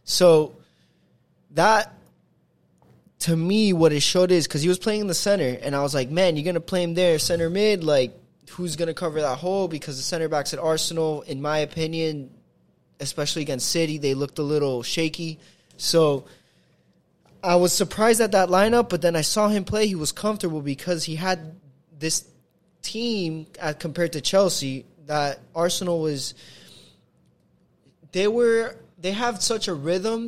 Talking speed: 170 wpm